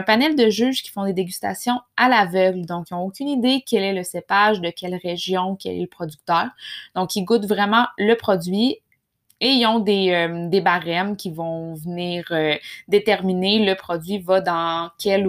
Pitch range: 180-220 Hz